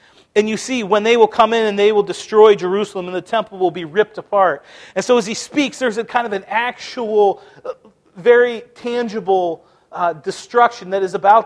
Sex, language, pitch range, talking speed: male, English, 180-215 Hz, 200 wpm